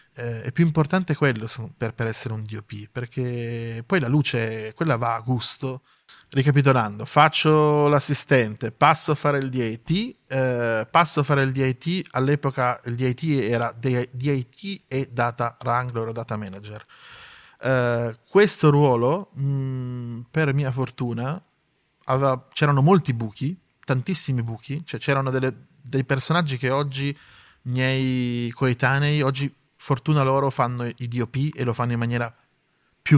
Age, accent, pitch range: 20-39, native, 120-145 Hz